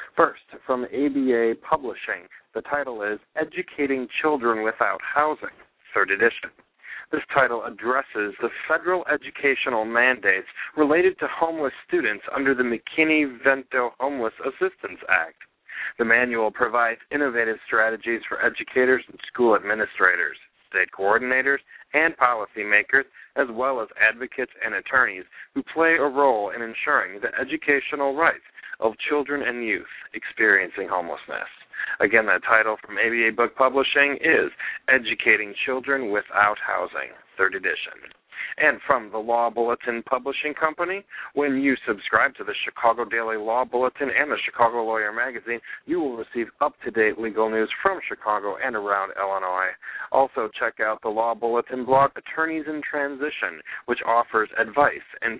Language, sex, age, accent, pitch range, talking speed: English, male, 40-59, American, 115-145 Hz, 135 wpm